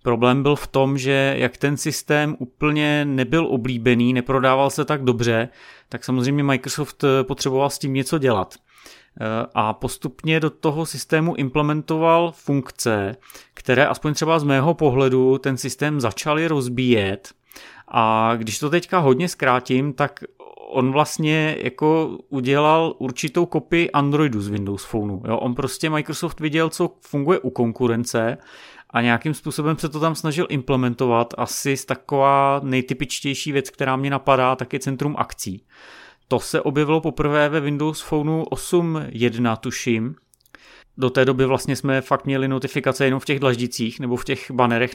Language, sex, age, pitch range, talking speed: Czech, male, 30-49, 125-145 Hz, 145 wpm